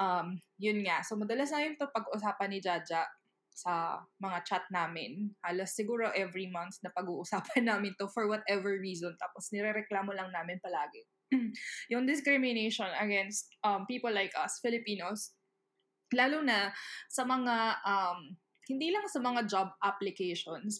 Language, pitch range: English, 190-235 Hz